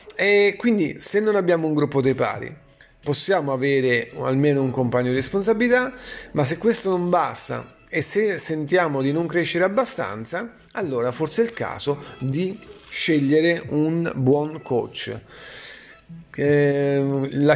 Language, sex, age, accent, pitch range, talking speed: Italian, male, 40-59, native, 135-175 Hz, 130 wpm